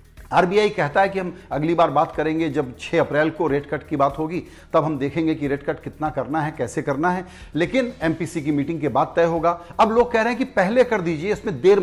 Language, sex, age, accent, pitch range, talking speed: Hindi, male, 40-59, native, 155-205 Hz, 250 wpm